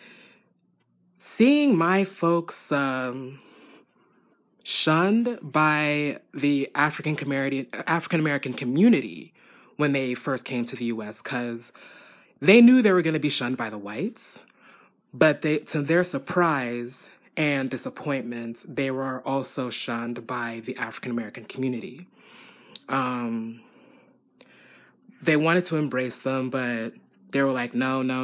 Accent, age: American, 20-39